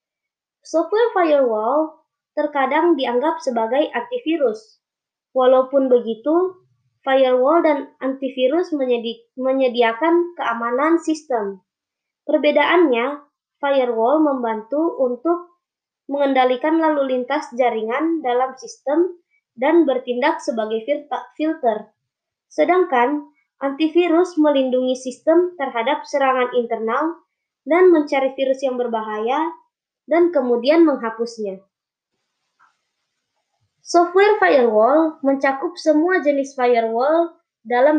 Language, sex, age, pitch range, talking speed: Indonesian, male, 20-39, 250-320 Hz, 80 wpm